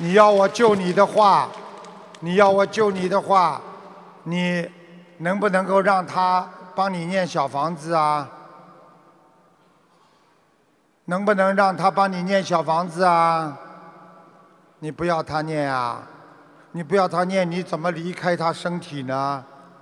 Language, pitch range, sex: Chinese, 150-185 Hz, male